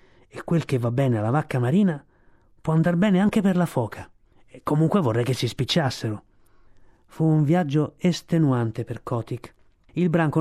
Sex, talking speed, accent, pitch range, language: male, 165 wpm, native, 120-165 Hz, Italian